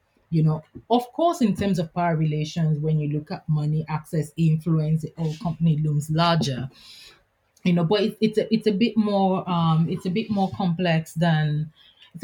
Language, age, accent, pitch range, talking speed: English, 30-49, Nigerian, 160-220 Hz, 185 wpm